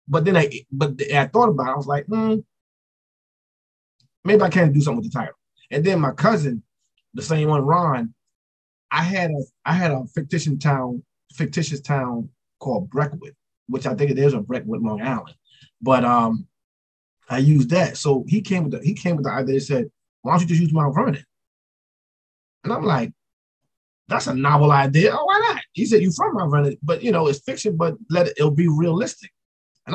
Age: 20-39